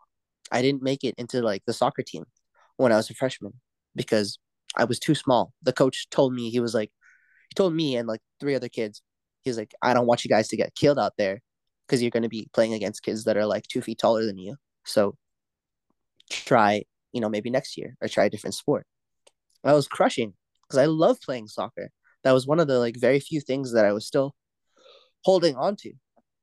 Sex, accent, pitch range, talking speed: male, American, 110-135 Hz, 225 wpm